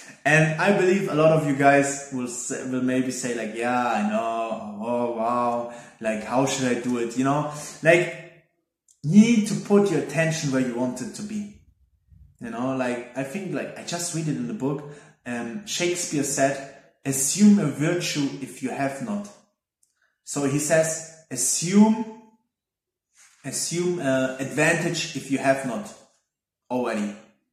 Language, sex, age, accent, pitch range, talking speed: English, male, 20-39, German, 135-195 Hz, 165 wpm